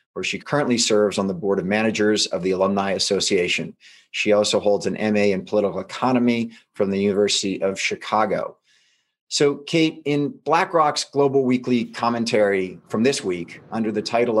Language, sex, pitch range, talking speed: English, male, 105-125 Hz, 160 wpm